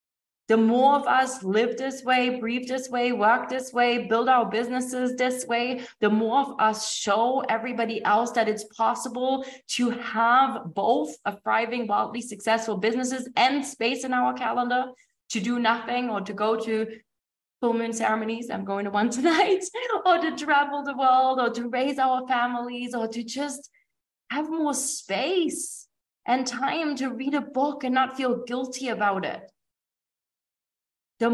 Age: 20-39